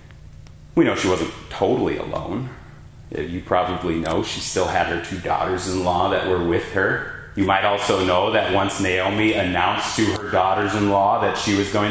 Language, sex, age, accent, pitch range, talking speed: English, male, 30-49, American, 105-160 Hz, 170 wpm